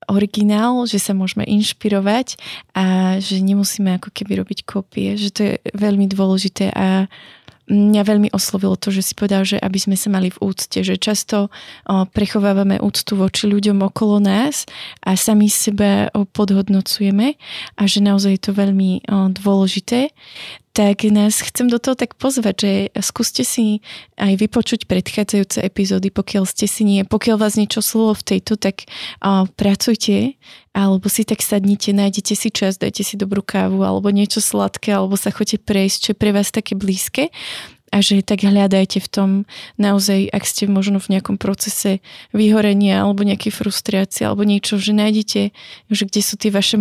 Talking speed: 165 wpm